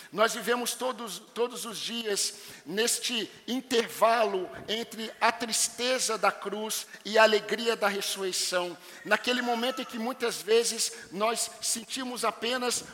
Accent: Brazilian